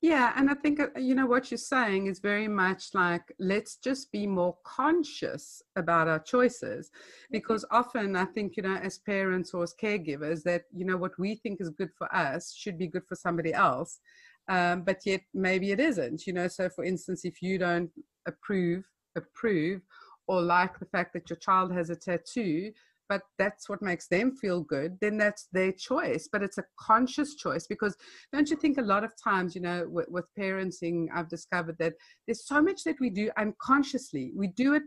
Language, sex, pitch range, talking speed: English, female, 180-255 Hz, 200 wpm